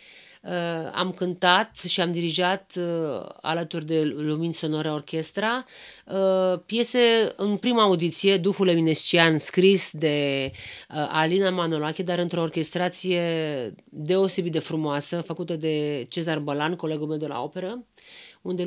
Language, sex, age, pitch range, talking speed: Romanian, female, 40-59, 165-195 Hz, 130 wpm